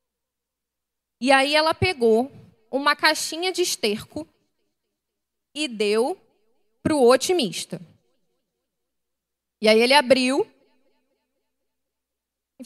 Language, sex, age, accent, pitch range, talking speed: Portuguese, female, 20-39, Brazilian, 225-325 Hz, 85 wpm